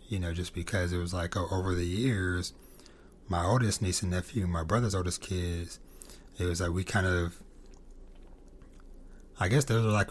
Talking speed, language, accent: 185 wpm, English, American